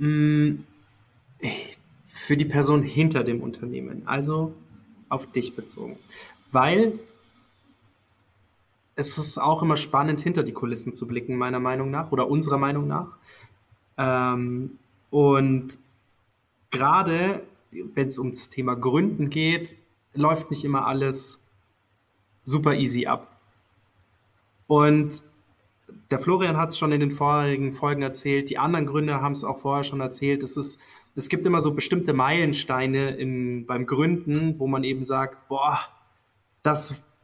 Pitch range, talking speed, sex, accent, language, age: 125-150 Hz, 130 wpm, male, German, German, 20-39